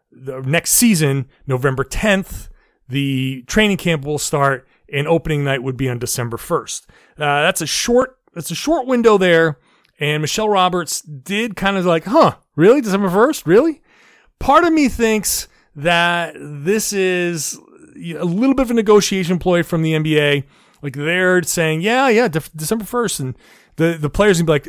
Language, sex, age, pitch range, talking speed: English, male, 30-49, 145-205 Hz, 170 wpm